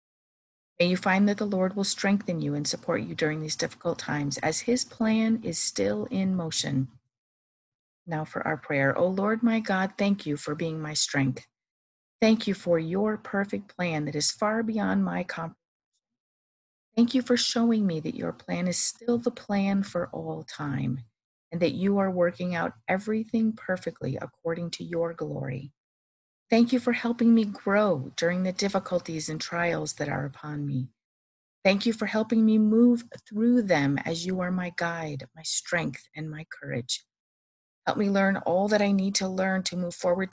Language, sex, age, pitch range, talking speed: English, female, 50-69, 155-210 Hz, 180 wpm